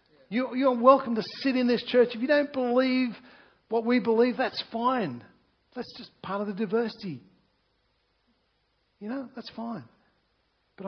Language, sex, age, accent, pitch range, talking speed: English, male, 60-79, Australian, 150-230 Hz, 150 wpm